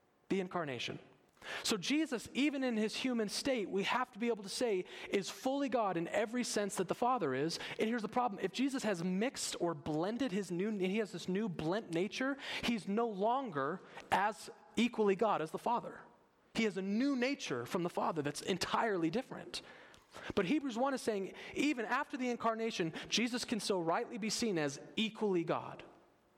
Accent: American